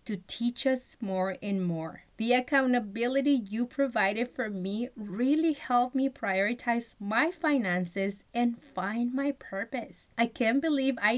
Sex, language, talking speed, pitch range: female, English, 140 wpm, 190-260 Hz